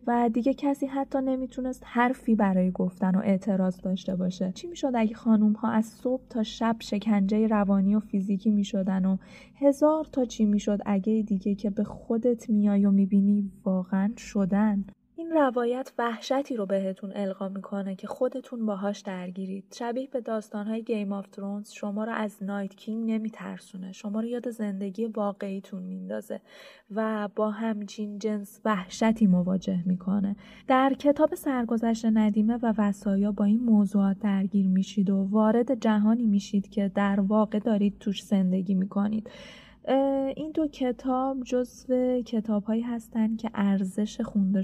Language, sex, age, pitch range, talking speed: Persian, female, 20-39, 200-230 Hz, 145 wpm